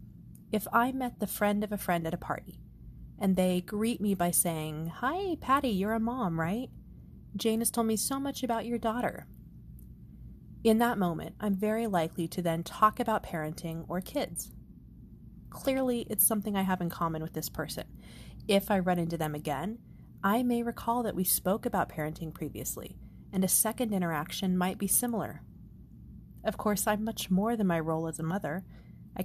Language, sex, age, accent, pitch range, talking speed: English, female, 30-49, American, 170-220 Hz, 185 wpm